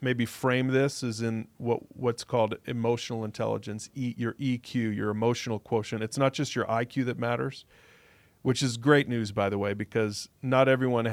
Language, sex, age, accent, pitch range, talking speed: English, male, 40-59, American, 110-130 Hz, 180 wpm